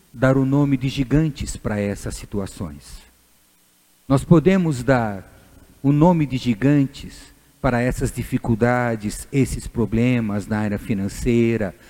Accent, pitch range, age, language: Brazilian, 120-190 Hz, 50-69, Portuguese